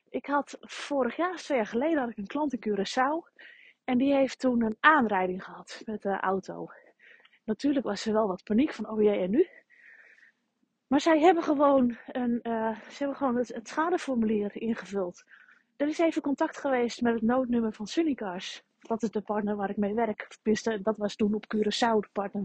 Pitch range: 225-330 Hz